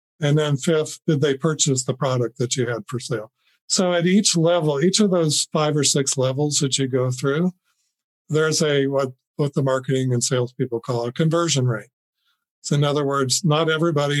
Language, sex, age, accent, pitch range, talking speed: English, male, 50-69, American, 130-160 Hz, 195 wpm